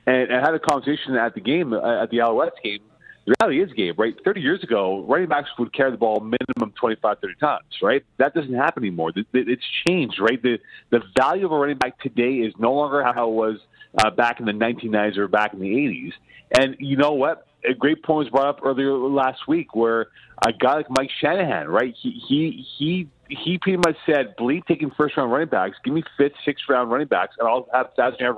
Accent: American